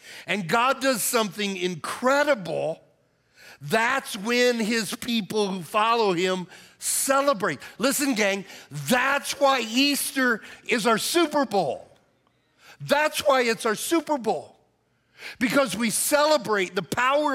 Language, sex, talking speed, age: English, male, 115 wpm, 50-69